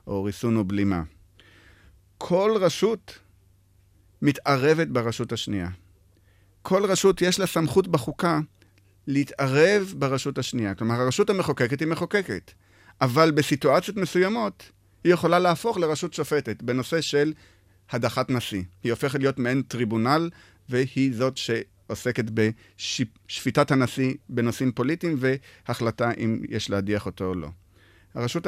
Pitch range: 105-150 Hz